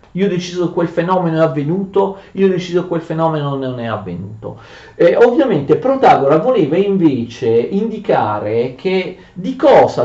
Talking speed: 135 wpm